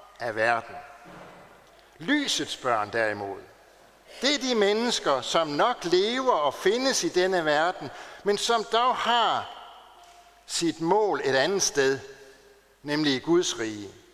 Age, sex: 60-79, male